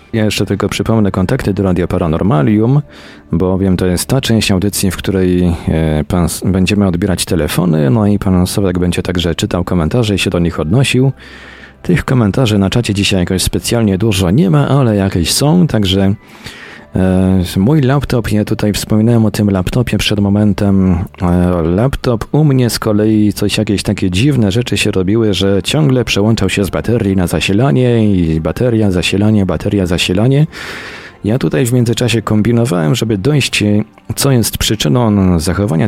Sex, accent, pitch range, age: male, native, 90-110 Hz, 40-59